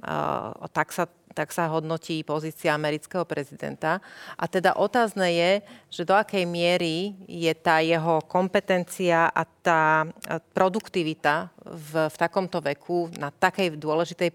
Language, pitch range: Slovak, 160-185 Hz